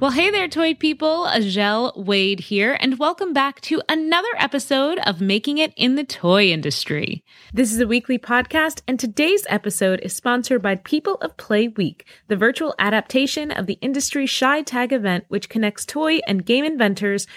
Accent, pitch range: American, 200-280 Hz